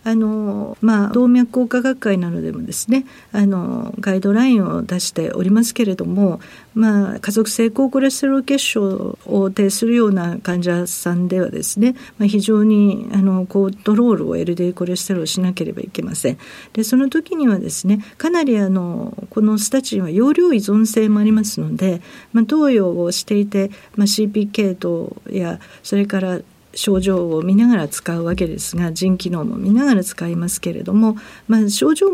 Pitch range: 190-240 Hz